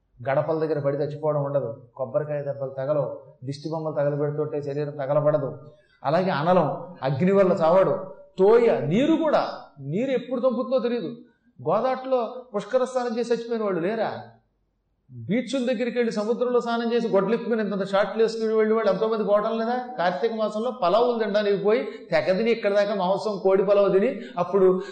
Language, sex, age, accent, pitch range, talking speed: Telugu, male, 30-49, native, 150-230 Hz, 145 wpm